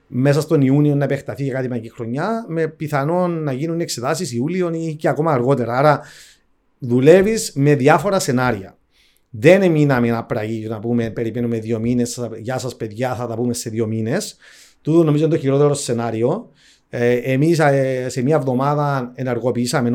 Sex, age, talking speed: male, 40-59, 160 wpm